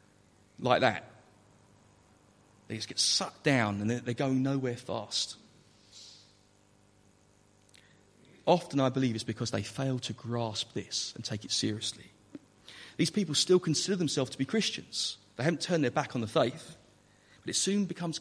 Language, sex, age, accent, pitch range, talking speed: English, male, 40-59, British, 105-140 Hz, 150 wpm